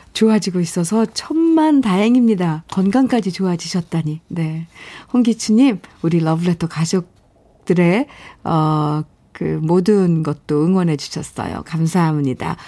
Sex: female